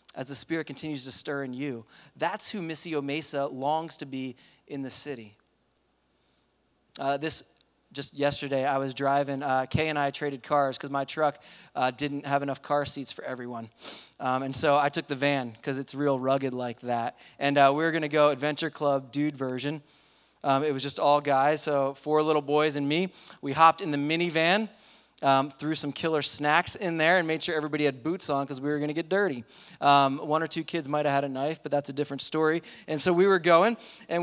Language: English